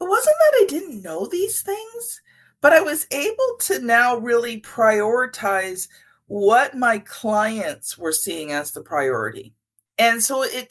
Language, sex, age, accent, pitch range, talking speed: English, female, 50-69, American, 200-285 Hz, 150 wpm